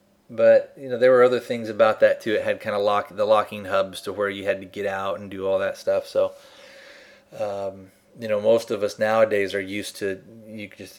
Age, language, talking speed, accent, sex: 30-49, English, 235 wpm, American, male